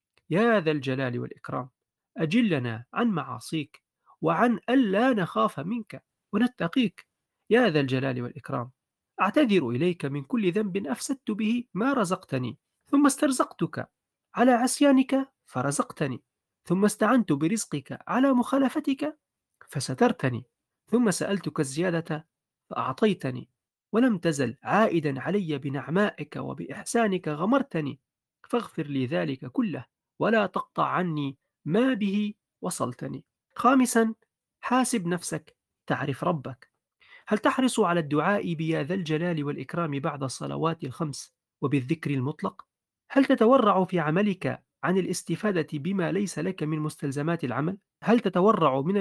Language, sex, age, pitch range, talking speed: Arabic, male, 40-59, 150-220 Hz, 110 wpm